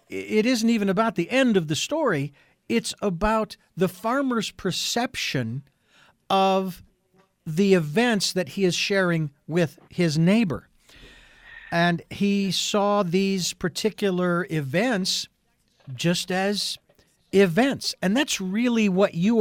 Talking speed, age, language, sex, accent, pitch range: 120 wpm, 50-69, Italian, male, American, 150-200 Hz